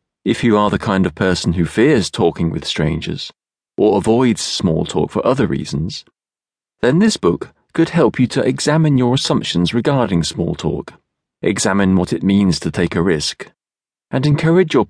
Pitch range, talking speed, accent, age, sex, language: 90-145 Hz, 175 wpm, British, 40-59, male, English